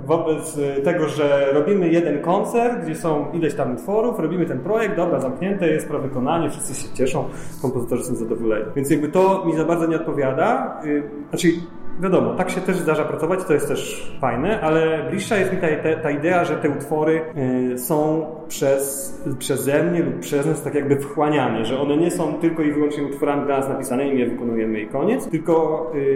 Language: Polish